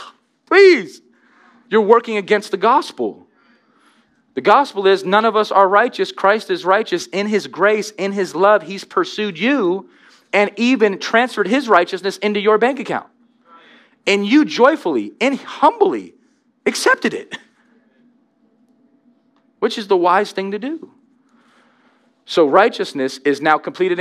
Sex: male